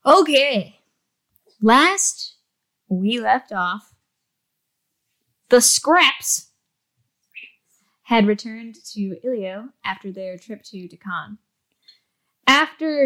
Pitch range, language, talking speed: 190-250 Hz, English, 80 wpm